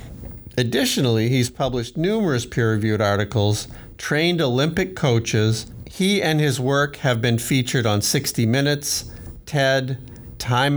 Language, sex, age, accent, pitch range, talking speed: English, male, 50-69, American, 110-135 Hz, 115 wpm